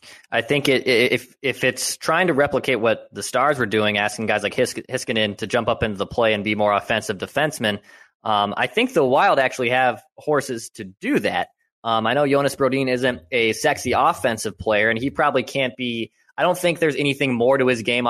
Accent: American